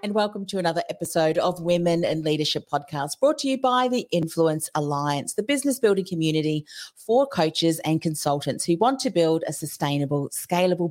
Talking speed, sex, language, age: 175 wpm, female, English, 40-59